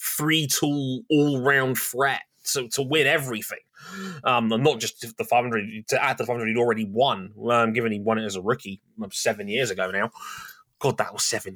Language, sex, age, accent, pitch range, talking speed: English, male, 20-39, British, 115-145 Hz, 180 wpm